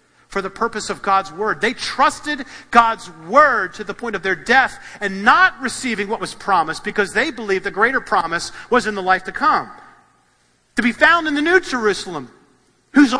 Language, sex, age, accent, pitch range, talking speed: English, male, 40-59, American, 185-280 Hz, 190 wpm